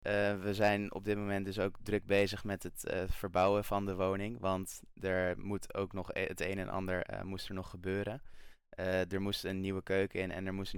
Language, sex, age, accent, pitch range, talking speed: Dutch, male, 20-39, Dutch, 90-100 Hz, 240 wpm